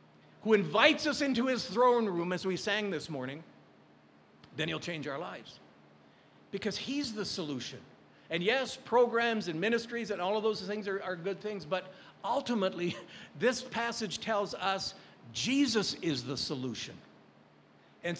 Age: 50-69